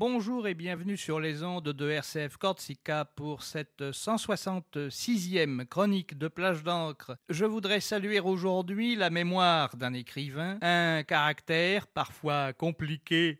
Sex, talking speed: male, 125 wpm